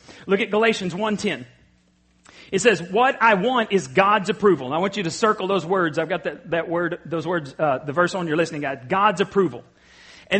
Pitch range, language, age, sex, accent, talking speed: 190-250 Hz, English, 40-59, male, American, 215 wpm